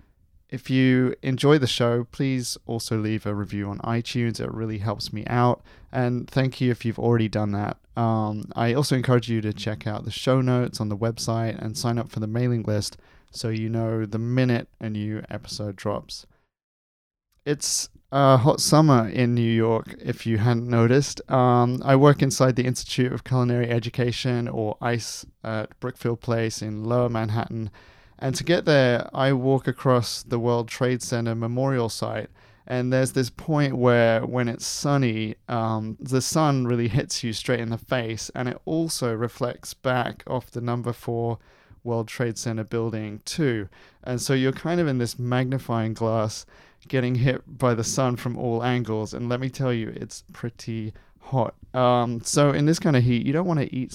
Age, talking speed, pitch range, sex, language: 30-49, 185 wpm, 110-130 Hz, male, English